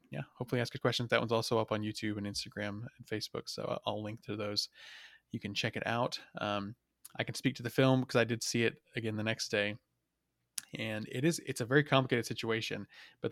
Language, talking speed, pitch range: English, 225 wpm, 105-125 Hz